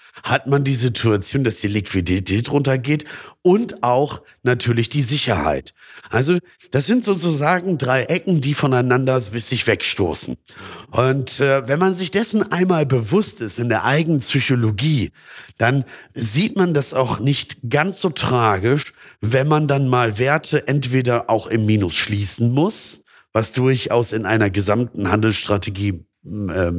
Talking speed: 140 wpm